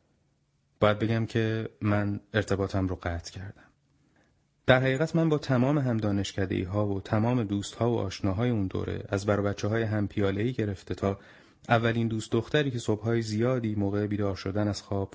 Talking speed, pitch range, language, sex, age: 170 wpm, 100-115 Hz, Persian, male, 30-49